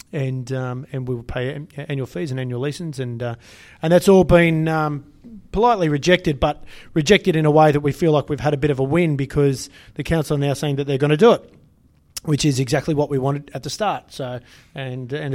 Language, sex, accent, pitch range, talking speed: English, male, Australian, 125-145 Hz, 235 wpm